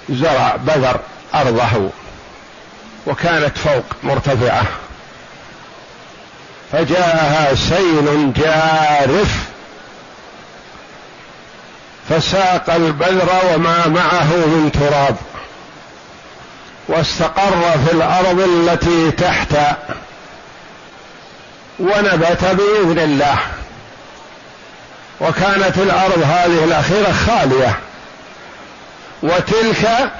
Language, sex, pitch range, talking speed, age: Arabic, male, 160-195 Hz, 60 wpm, 50-69